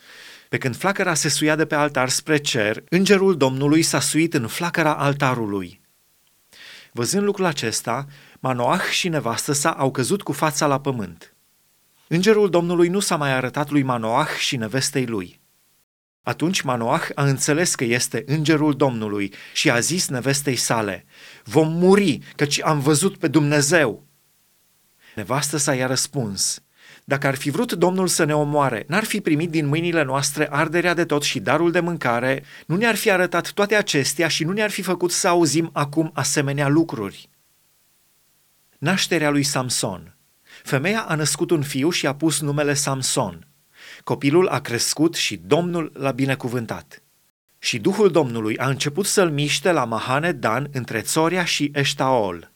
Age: 30-49